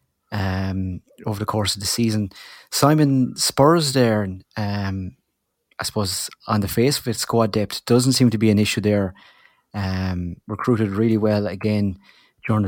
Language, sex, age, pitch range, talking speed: English, male, 30-49, 100-110 Hz, 155 wpm